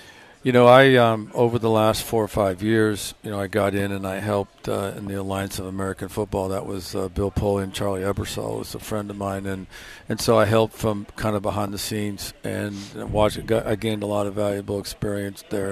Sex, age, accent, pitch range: male, 50-69, American, 100-110 Hz